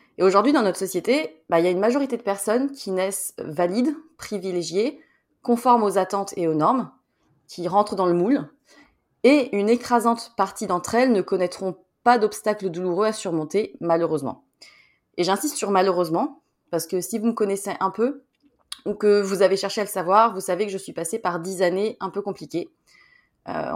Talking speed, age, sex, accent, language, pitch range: 185 wpm, 20-39, female, French, French, 180-230 Hz